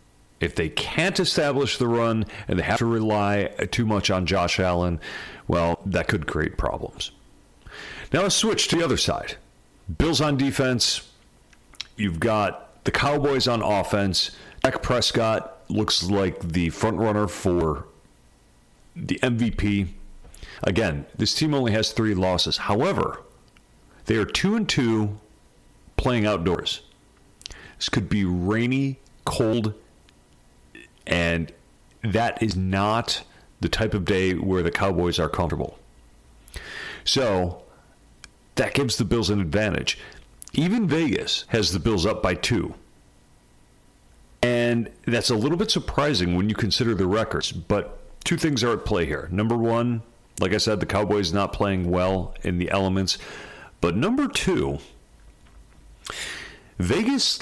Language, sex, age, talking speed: English, male, 40-59, 135 wpm